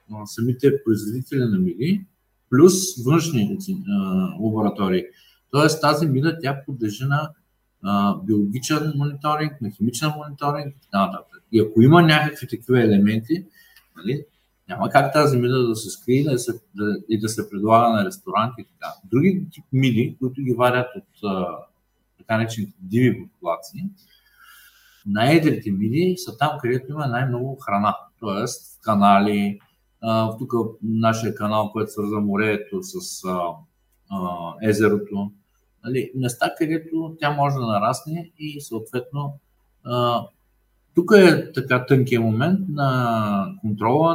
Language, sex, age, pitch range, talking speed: Bulgarian, male, 50-69, 110-150 Hz, 125 wpm